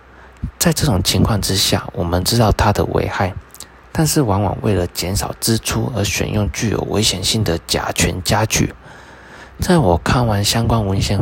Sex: male